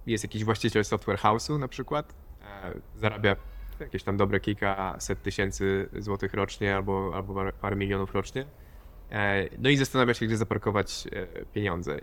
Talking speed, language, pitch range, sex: 140 wpm, Polish, 95-110 Hz, male